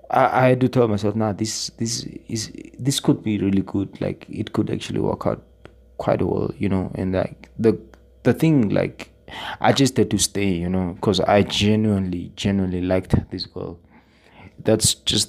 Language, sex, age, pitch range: English, male, 20-39, 95-110 Hz